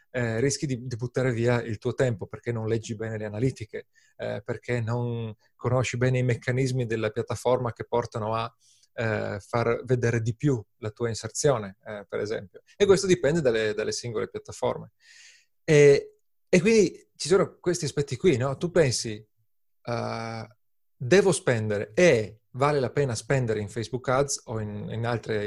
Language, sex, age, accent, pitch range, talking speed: Italian, male, 30-49, native, 115-150 Hz, 165 wpm